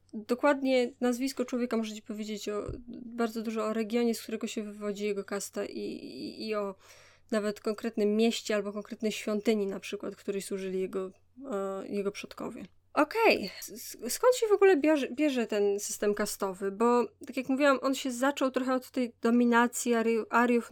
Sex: female